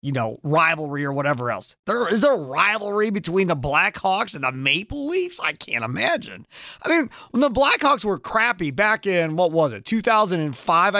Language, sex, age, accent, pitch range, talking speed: English, male, 30-49, American, 150-210 Hz, 185 wpm